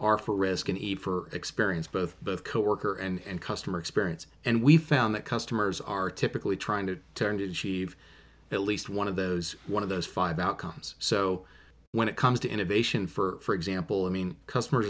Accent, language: American, English